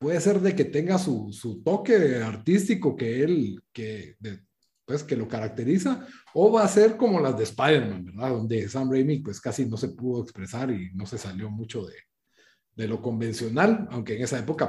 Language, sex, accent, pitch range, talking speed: Spanish, male, Mexican, 120-185 Hz, 190 wpm